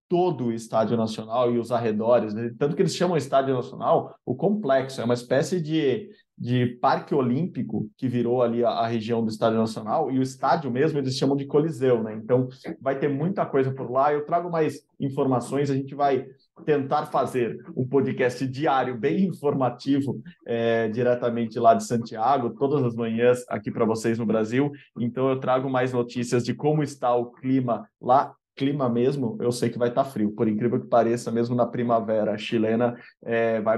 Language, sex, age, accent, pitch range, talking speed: Portuguese, male, 20-39, Brazilian, 120-145 Hz, 190 wpm